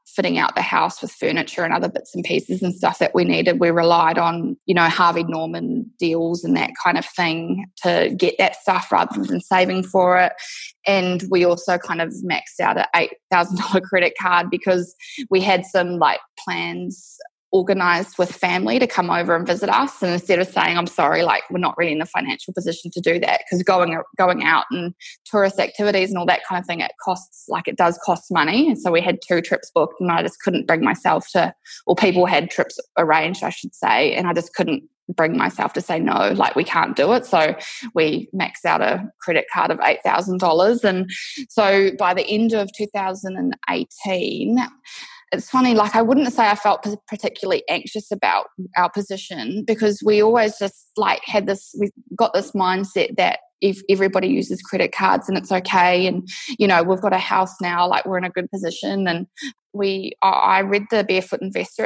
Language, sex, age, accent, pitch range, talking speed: English, female, 20-39, Australian, 180-215 Hz, 200 wpm